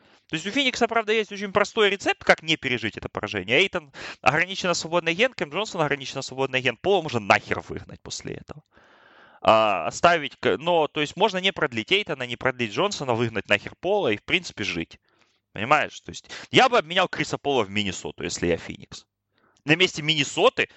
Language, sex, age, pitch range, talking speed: Russian, male, 20-39, 120-185 Hz, 185 wpm